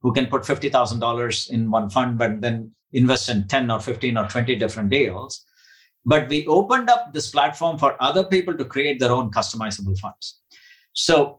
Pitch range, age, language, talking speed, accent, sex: 120-155 Hz, 50-69, English, 180 wpm, Indian, male